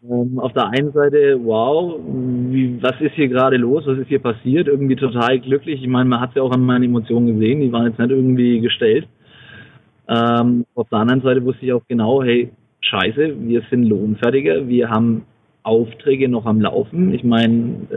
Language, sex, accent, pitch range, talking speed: German, male, German, 115-130 Hz, 185 wpm